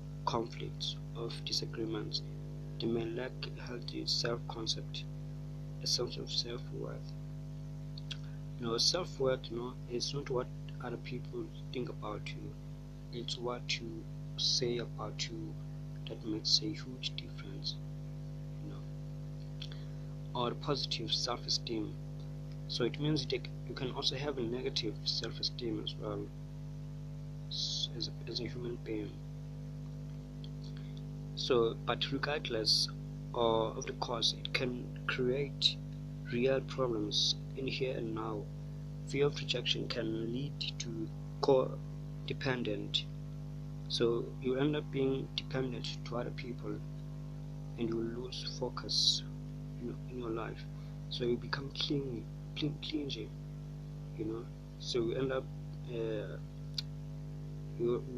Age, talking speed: 50-69, 110 wpm